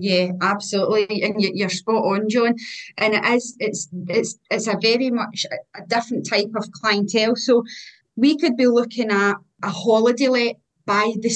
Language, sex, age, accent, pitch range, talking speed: English, female, 30-49, British, 205-235 Hz, 170 wpm